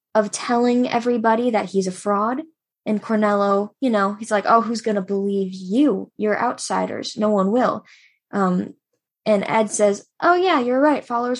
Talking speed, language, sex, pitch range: 170 wpm, English, female, 190-230 Hz